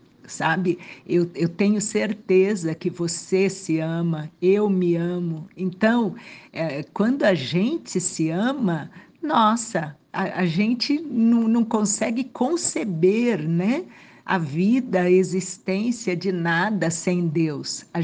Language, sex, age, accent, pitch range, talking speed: Portuguese, female, 60-79, Brazilian, 175-225 Hz, 115 wpm